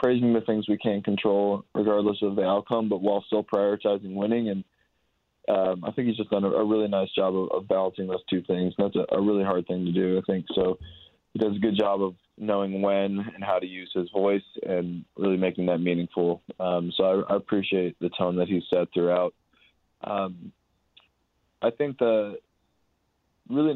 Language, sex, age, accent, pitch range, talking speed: English, male, 20-39, American, 95-105 Hz, 200 wpm